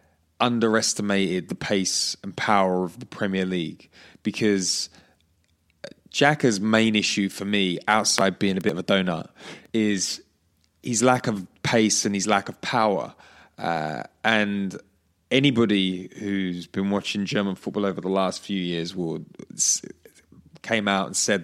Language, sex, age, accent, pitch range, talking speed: English, male, 20-39, British, 95-110 Hz, 140 wpm